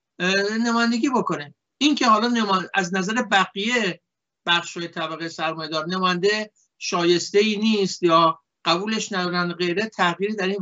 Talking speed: 125 wpm